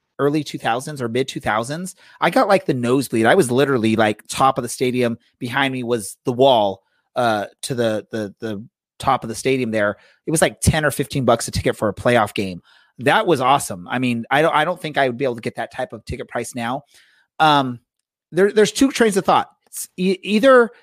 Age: 30-49